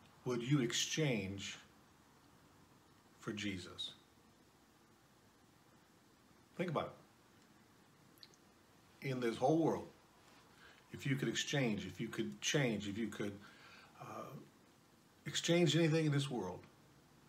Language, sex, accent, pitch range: English, male, American, 105-145 Hz